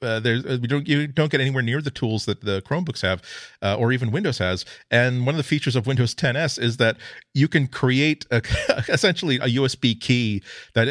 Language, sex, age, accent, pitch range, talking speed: English, male, 40-59, American, 105-130 Hz, 220 wpm